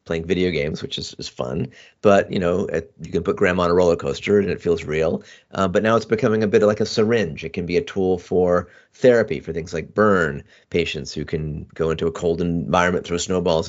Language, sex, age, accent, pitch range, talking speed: German, male, 30-49, American, 85-95 Hz, 240 wpm